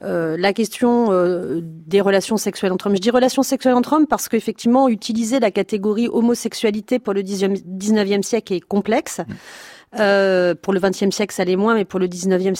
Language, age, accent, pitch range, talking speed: French, 40-59, French, 190-240 Hz, 185 wpm